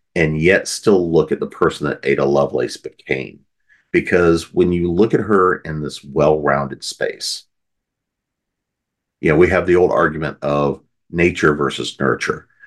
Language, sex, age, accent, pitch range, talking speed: English, male, 50-69, American, 70-85 Hz, 150 wpm